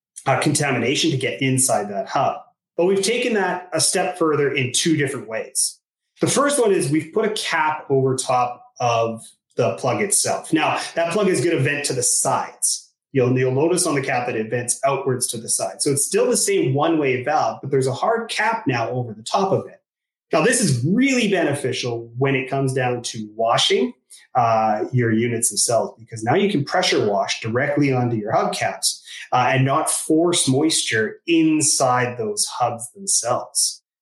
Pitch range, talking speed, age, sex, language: 125-160 Hz, 190 wpm, 30-49, male, English